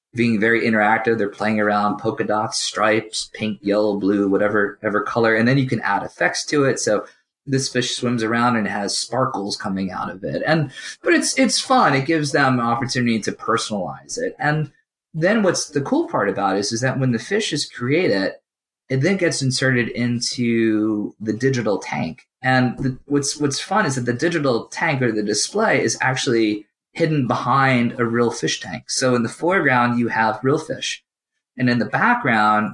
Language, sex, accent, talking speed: English, male, American, 190 wpm